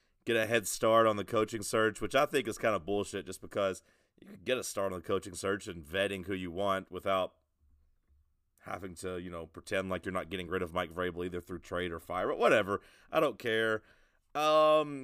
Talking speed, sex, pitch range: 225 wpm, male, 95-120 Hz